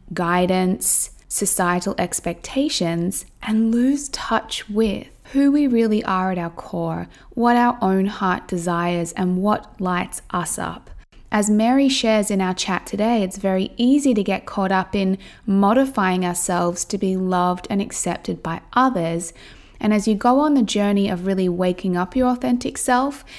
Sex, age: female, 20-39